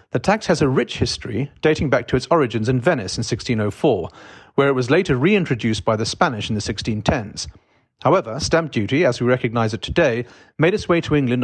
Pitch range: 115-160 Hz